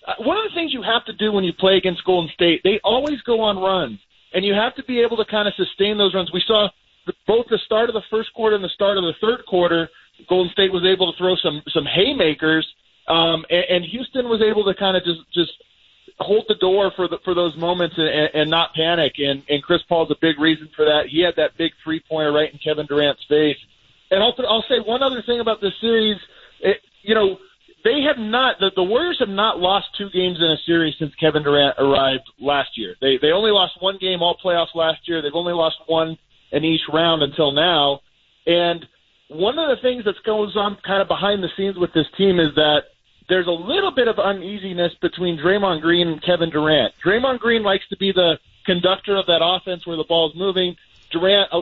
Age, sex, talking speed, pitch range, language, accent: 40-59, male, 225 wpm, 160-205 Hz, English, American